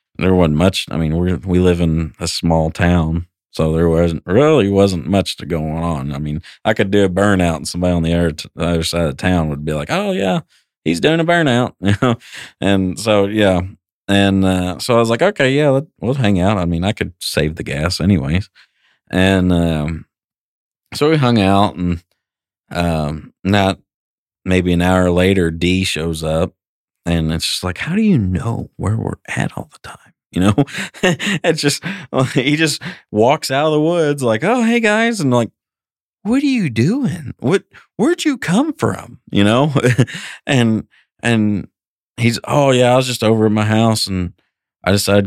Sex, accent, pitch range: male, American, 85-125 Hz